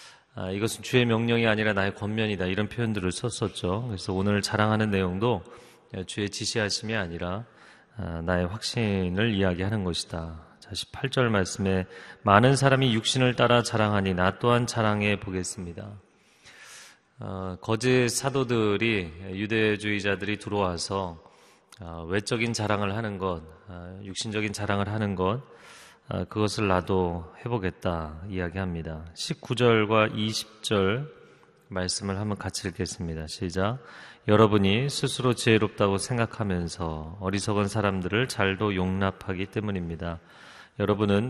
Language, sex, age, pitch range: Korean, male, 30-49, 95-110 Hz